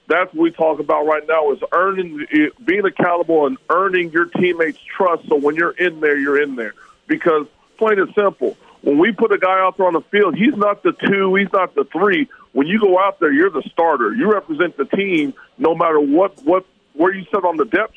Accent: American